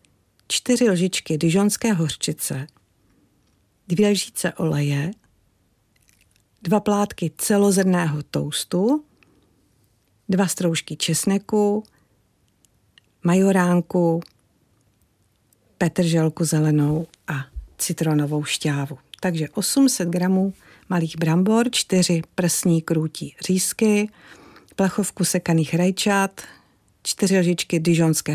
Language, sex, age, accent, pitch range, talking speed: Czech, female, 50-69, native, 155-190 Hz, 75 wpm